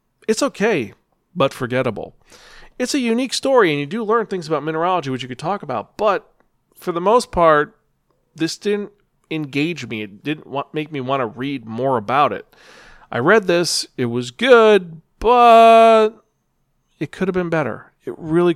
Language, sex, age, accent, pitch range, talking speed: English, male, 40-59, American, 130-180 Hz, 170 wpm